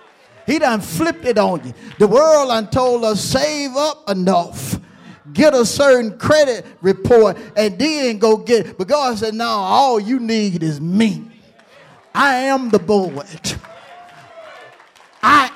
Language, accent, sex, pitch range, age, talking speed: English, American, male, 195-285 Hz, 50-69, 145 wpm